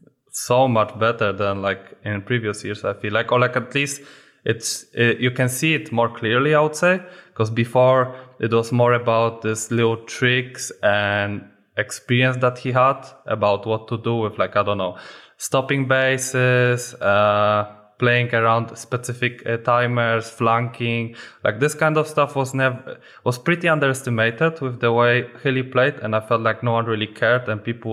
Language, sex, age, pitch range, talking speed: English, male, 20-39, 110-130 Hz, 175 wpm